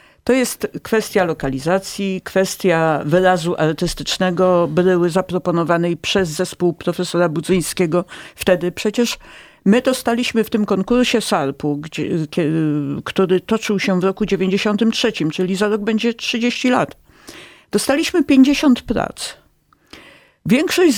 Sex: female